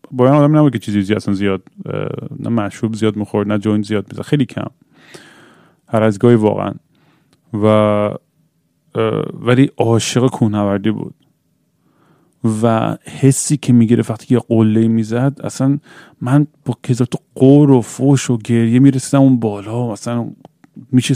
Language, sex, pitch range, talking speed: Persian, male, 105-135 Hz, 135 wpm